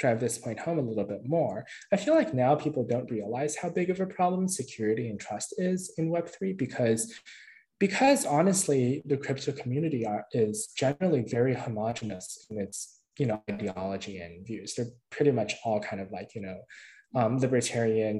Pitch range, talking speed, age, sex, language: 110-155 Hz, 180 wpm, 20-39, male, English